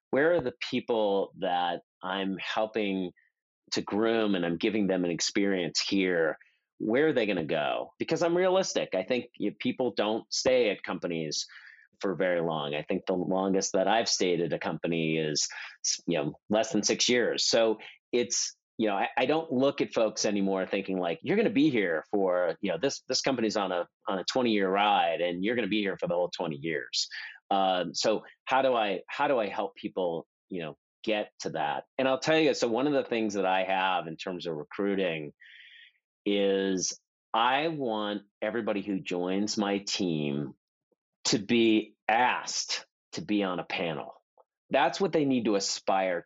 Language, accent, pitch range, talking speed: English, American, 95-140 Hz, 195 wpm